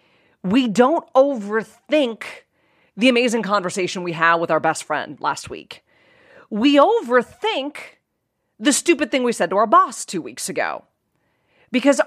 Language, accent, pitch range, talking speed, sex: English, American, 180-260 Hz, 140 wpm, female